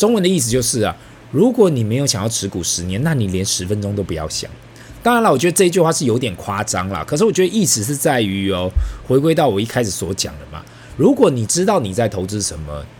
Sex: male